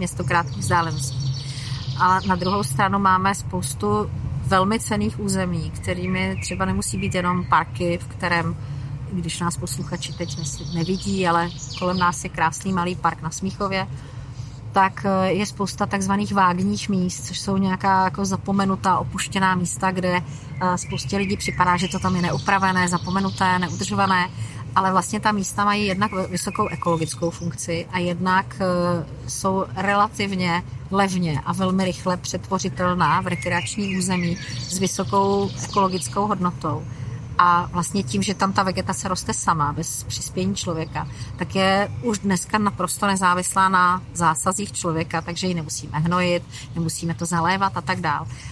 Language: Czech